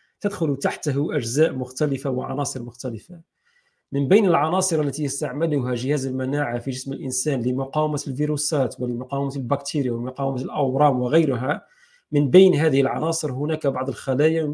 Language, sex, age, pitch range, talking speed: Arabic, male, 40-59, 130-155 Hz, 125 wpm